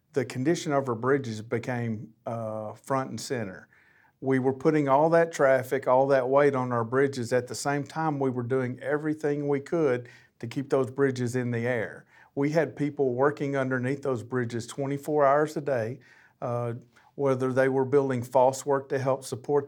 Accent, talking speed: American, 185 wpm